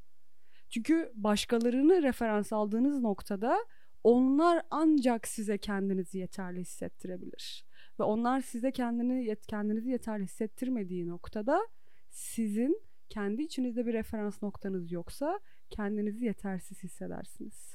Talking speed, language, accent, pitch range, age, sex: 100 wpm, Turkish, native, 200-260 Hz, 30-49, female